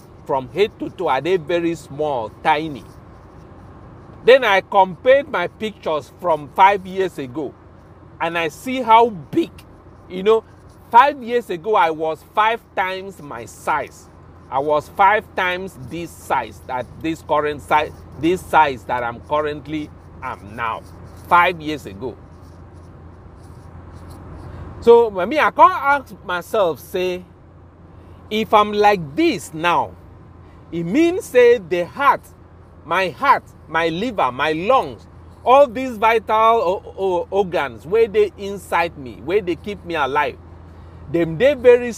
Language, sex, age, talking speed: English, male, 40-59, 135 wpm